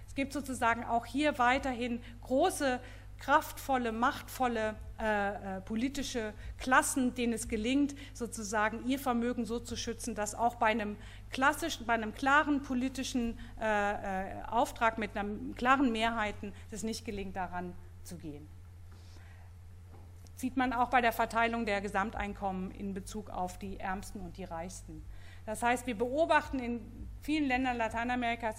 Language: German